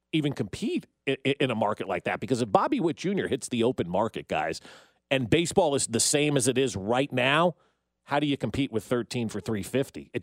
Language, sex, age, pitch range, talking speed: English, male, 40-59, 120-150 Hz, 210 wpm